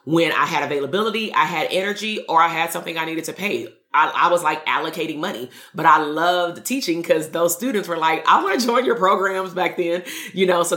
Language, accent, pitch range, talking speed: English, American, 160-185 Hz, 230 wpm